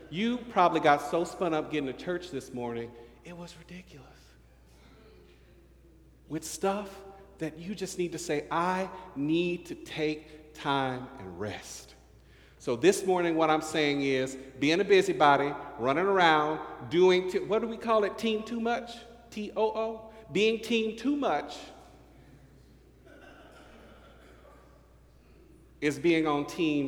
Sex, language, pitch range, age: male, English, 145-235 Hz, 50-69